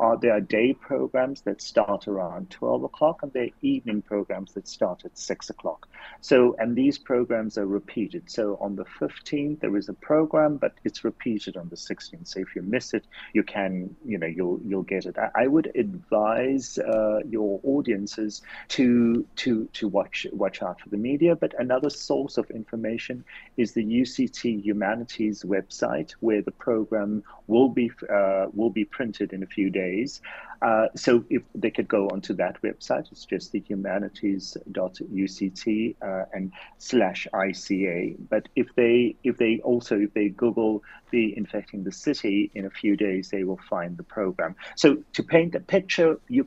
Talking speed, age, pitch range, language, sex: 175 wpm, 40-59, 100-130 Hz, English, male